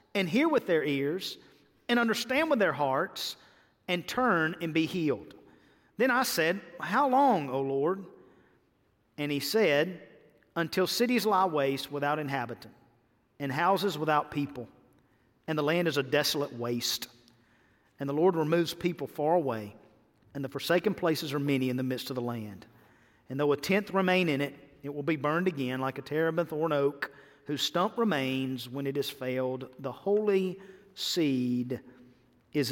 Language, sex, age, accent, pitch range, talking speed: English, male, 40-59, American, 135-175 Hz, 165 wpm